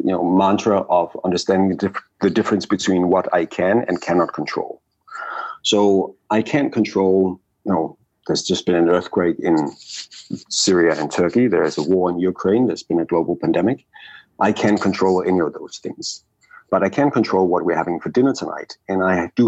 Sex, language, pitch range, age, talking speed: male, English, 95-110 Hz, 50-69, 190 wpm